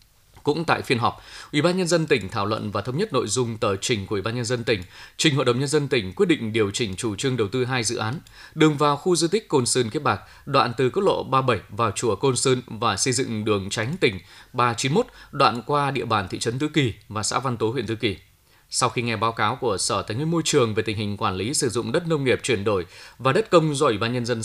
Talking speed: 270 wpm